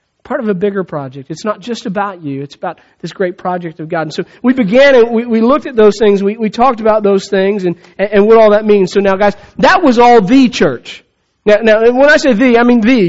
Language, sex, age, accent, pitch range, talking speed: English, male, 40-59, American, 185-240 Hz, 260 wpm